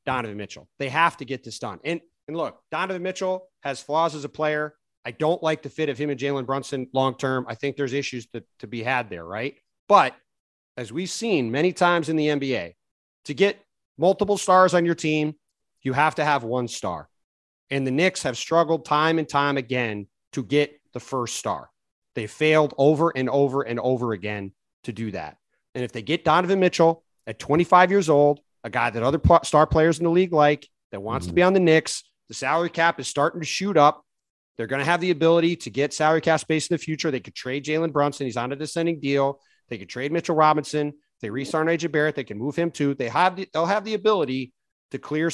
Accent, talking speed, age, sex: American, 220 wpm, 30-49, male